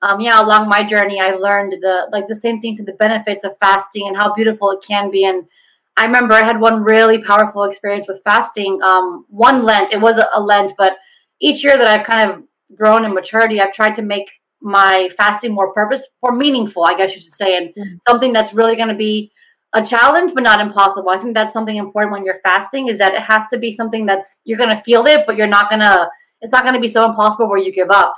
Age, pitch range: 30-49, 195-230 Hz